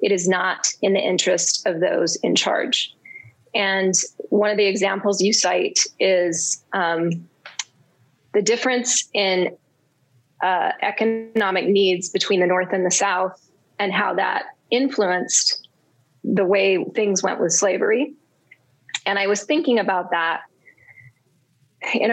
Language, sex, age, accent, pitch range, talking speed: English, female, 20-39, American, 175-220 Hz, 130 wpm